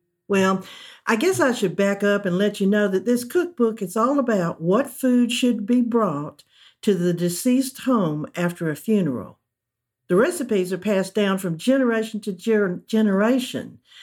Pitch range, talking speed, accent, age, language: 175-235 Hz, 165 wpm, American, 60-79, English